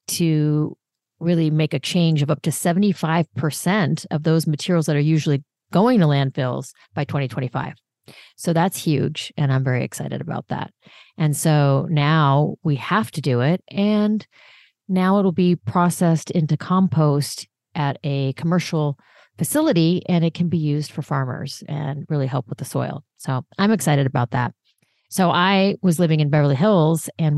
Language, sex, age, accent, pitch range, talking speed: English, female, 40-59, American, 140-170 Hz, 160 wpm